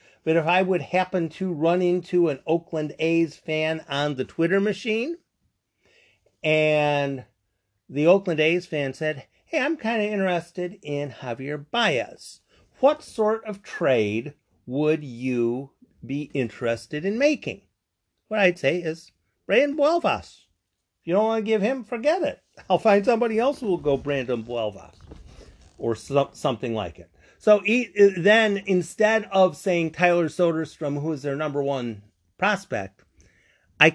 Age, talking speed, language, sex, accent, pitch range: 50-69, 145 wpm, English, male, American, 120-180 Hz